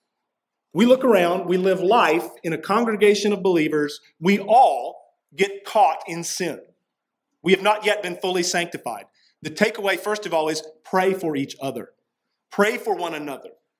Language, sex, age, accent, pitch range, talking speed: English, male, 40-59, American, 155-210 Hz, 165 wpm